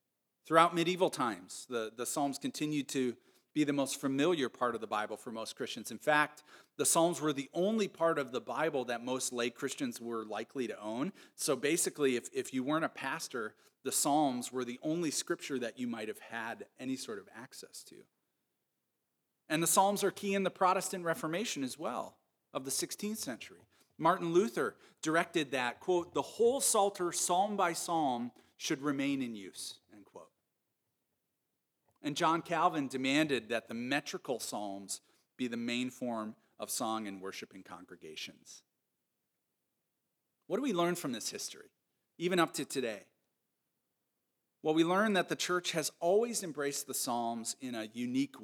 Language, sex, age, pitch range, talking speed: English, male, 40-59, 125-180 Hz, 165 wpm